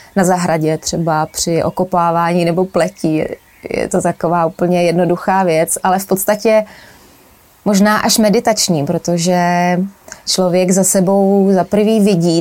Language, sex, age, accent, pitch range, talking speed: Czech, female, 20-39, native, 170-190 Hz, 125 wpm